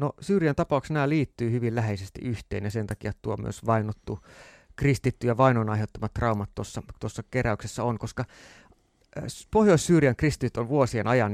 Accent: native